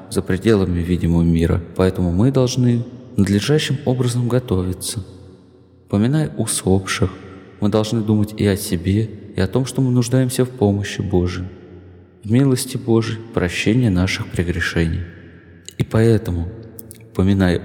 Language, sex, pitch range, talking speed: Russian, male, 95-125 Hz, 120 wpm